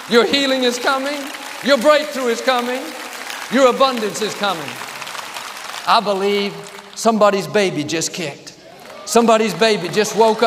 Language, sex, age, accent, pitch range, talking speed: English, male, 50-69, American, 185-240 Hz, 125 wpm